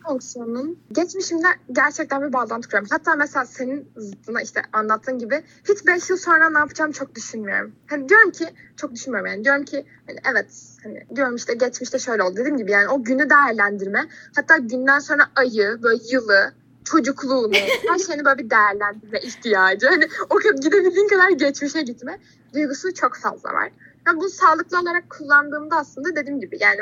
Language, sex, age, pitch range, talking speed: Turkish, female, 10-29, 225-300 Hz, 165 wpm